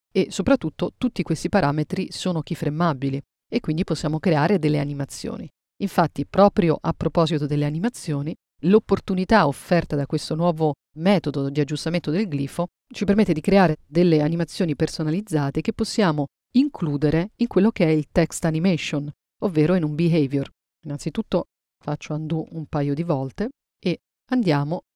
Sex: female